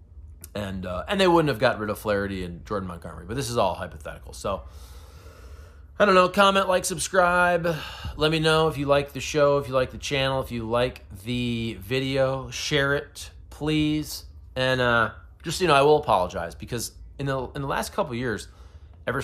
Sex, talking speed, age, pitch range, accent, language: male, 195 wpm, 30-49, 90-125 Hz, American, English